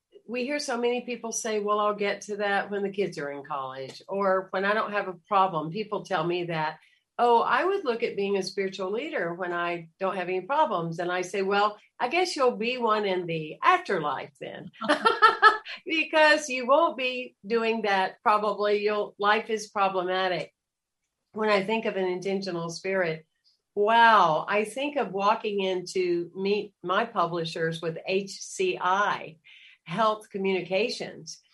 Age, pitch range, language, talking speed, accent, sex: 50-69, 185-230 Hz, English, 165 wpm, American, female